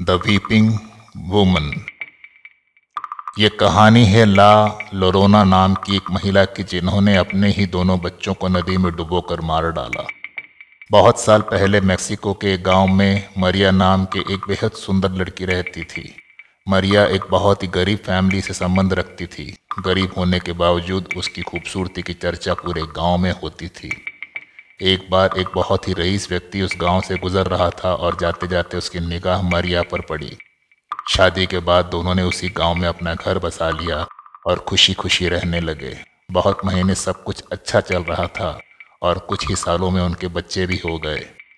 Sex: male